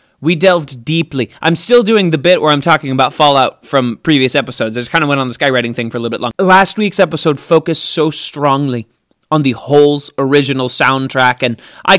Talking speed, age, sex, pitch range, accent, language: 215 wpm, 30-49, male, 130-165 Hz, American, English